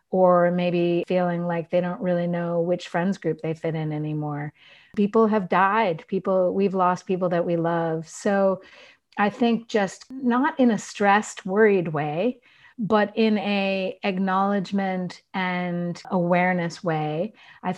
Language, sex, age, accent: English, female, 30-49, American